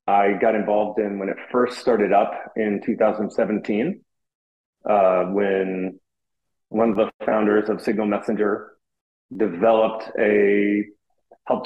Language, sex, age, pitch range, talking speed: English, male, 30-49, 95-115 Hz, 120 wpm